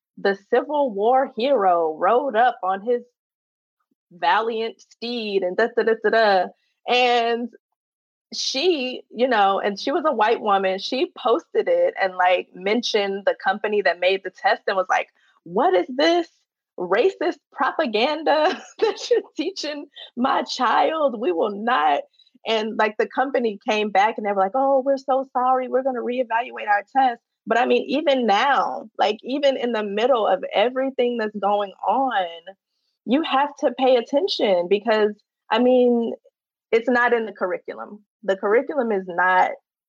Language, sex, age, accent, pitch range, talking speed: English, female, 20-39, American, 195-265 Hz, 160 wpm